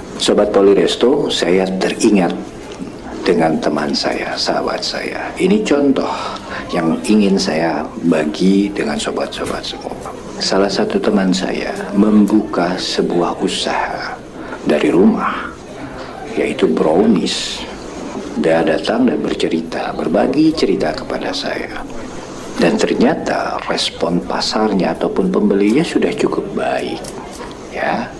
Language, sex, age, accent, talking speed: Indonesian, male, 50-69, native, 100 wpm